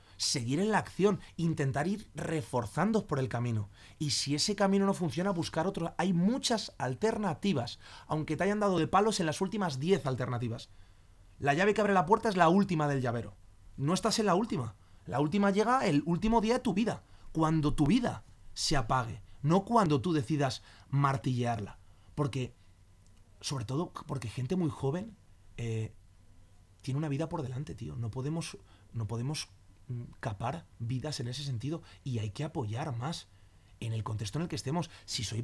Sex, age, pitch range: male, 30-49, 120-175 Hz